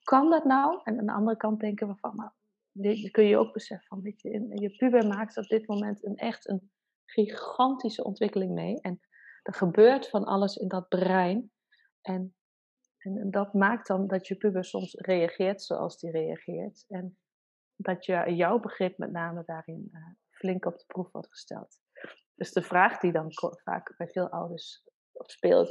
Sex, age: female, 30-49